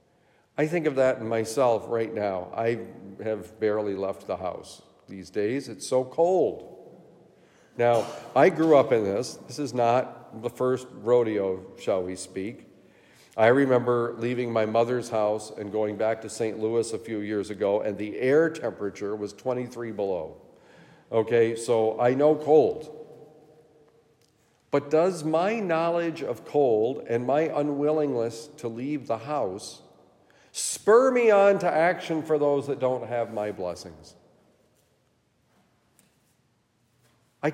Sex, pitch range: male, 105-150 Hz